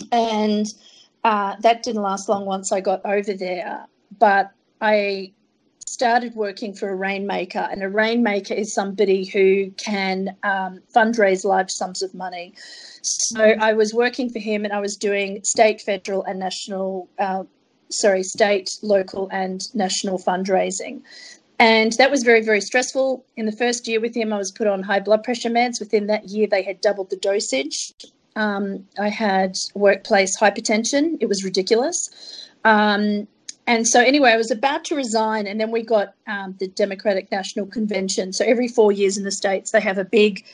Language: English